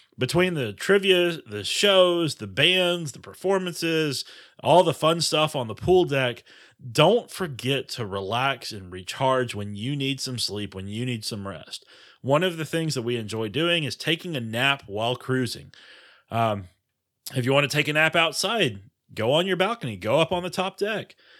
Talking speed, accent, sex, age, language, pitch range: 185 wpm, American, male, 30-49, English, 110-155 Hz